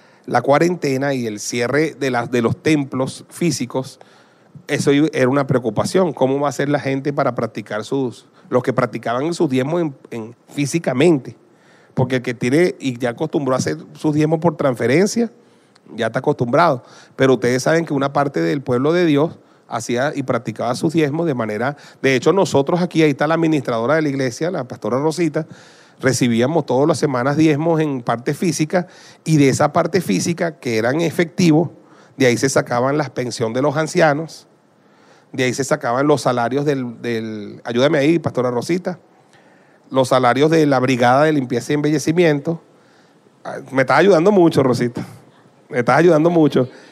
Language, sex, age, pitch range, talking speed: Spanish, male, 40-59, 125-160 Hz, 170 wpm